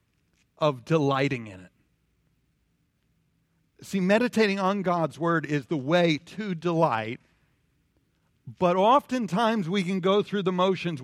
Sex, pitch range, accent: male, 145-195 Hz, American